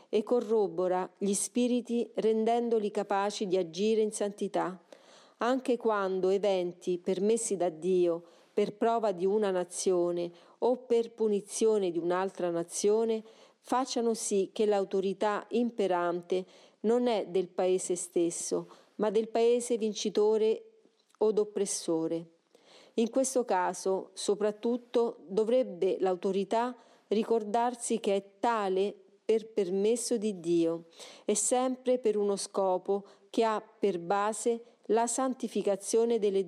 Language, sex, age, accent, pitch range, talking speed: Italian, female, 40-59, native, 190-230 Hz, 115 wpm